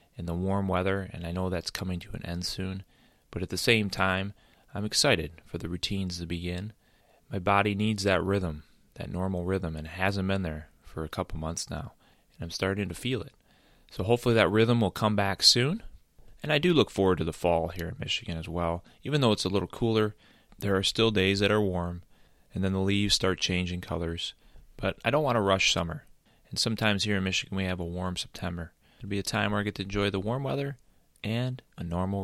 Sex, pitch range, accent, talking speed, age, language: male, 85-115 Hz, American, 225 wpm, 30-49, English